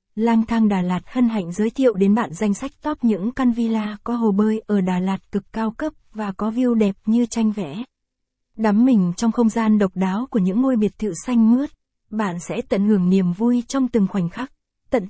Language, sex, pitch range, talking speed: Vietnamese, female, 200-235 Hz, 225 wpm